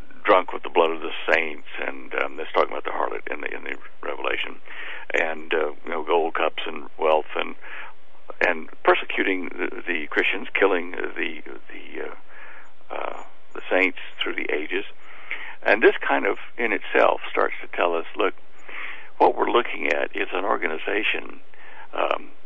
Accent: American